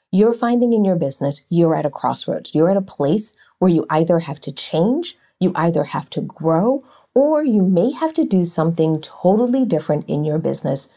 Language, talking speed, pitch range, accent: English, 195 wpm, 165-255 Hz, American